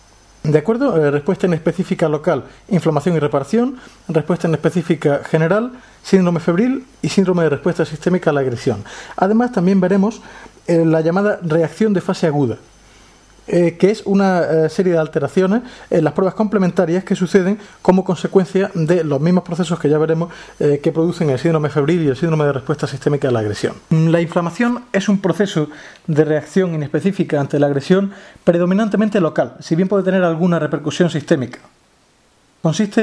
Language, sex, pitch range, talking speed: English, male, 150-190 Hz, 170 wpm